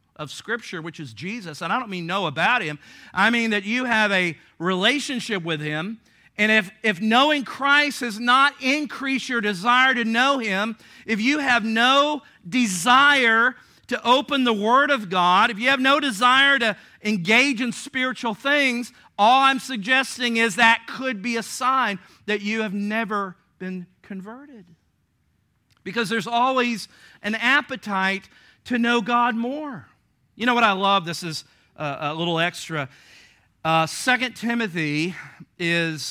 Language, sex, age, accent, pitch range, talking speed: English, male, 50-69, American, 150-235 Hz, 155 wpm